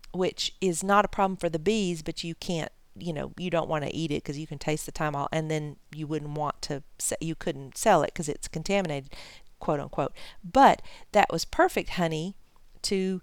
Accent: American